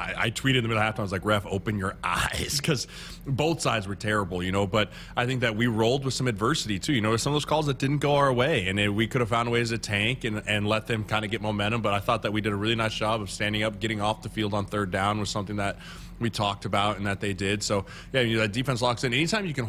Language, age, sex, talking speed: English, 20-39, male, 310 wpm